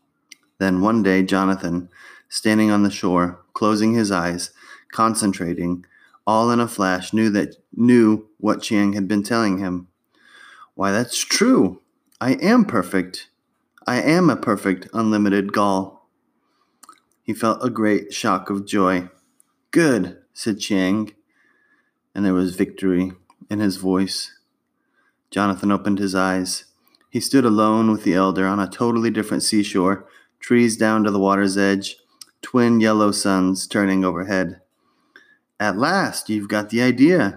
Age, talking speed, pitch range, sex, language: 30-49, 140 wpm, 95-110 Hz, male, English